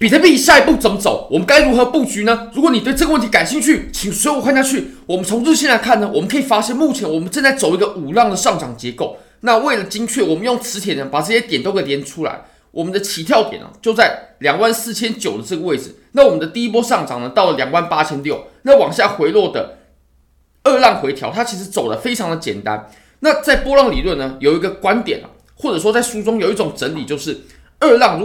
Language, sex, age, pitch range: Chinese, male, 20-39, 170-255 Hz